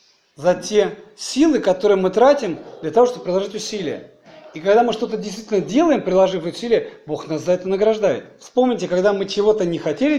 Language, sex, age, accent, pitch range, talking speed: Russian, male, 40-59, native, 195-270 Hz, 175 wpm